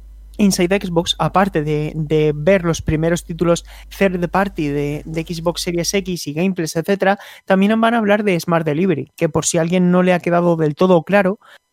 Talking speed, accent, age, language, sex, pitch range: 195 wpm, Spanish, 20-39, Spanish, male, 165-200 Hz